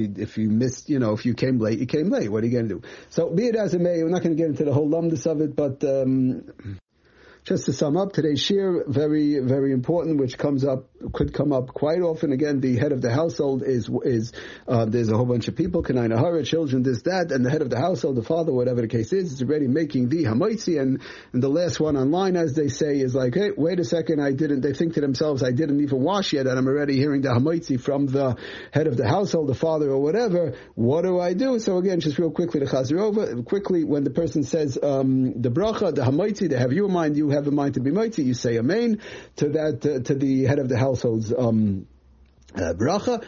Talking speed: 250 wpm